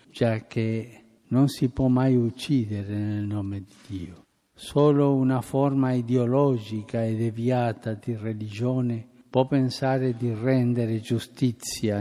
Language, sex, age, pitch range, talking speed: Italian, male, 50-69, 110-140 Hz, 120 wpm